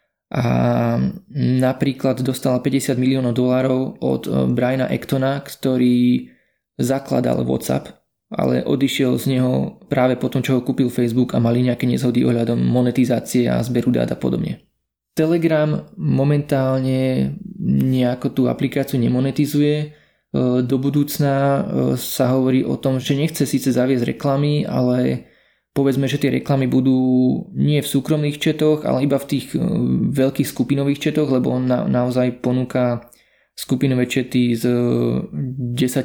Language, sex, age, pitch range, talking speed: Slovak, male, 20-39, 120-135 Hz, 125 wpm